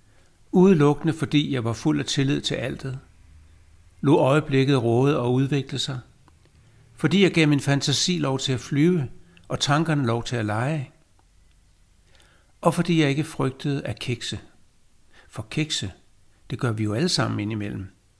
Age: 60-79